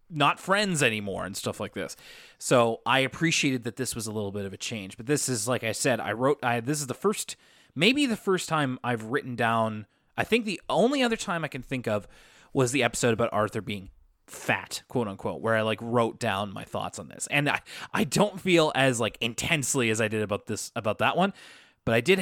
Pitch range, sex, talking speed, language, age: 115-160 Hz, male, 230 wpm, English, 20-39